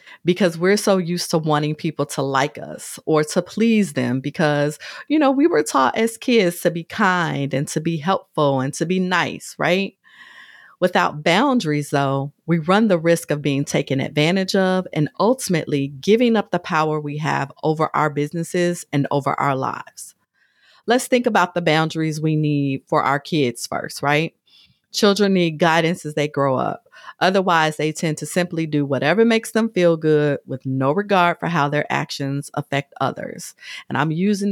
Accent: American